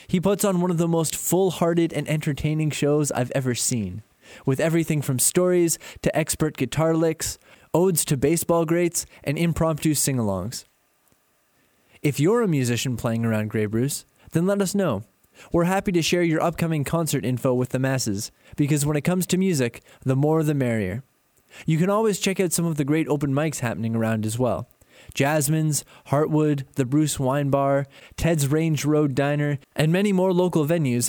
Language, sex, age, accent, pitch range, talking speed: English, male, 20-39, American, 130-165 Hz, 180 wpm